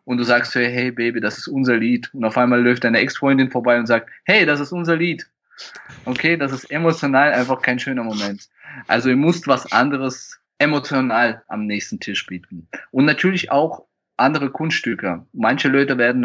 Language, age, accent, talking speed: German, 20-39, German, 180 wpm